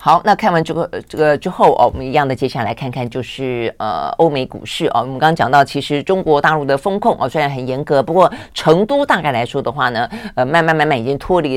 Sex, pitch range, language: female, 125-160 Hz, Chinese